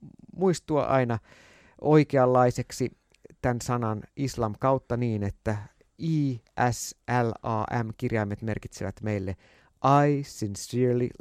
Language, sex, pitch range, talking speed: Finnish, male, 105-135 Hz, 100 wpm